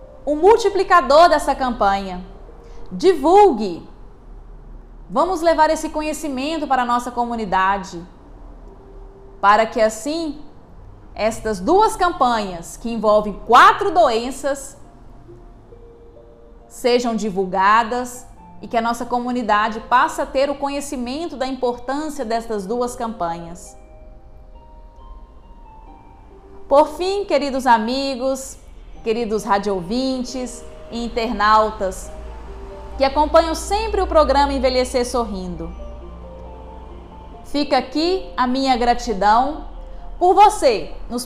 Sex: female